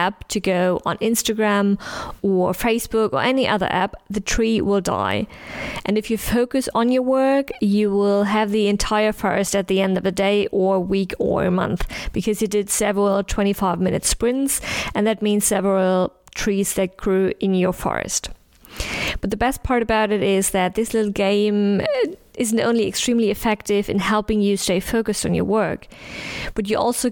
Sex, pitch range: female, 195-220 Hz